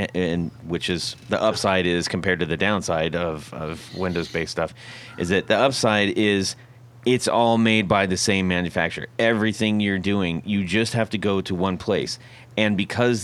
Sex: male